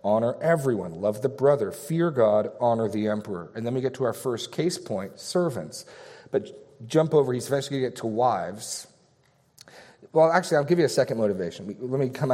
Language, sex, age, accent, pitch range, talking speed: English, male, 40-59, American, 110-140 Hz, 200 wpm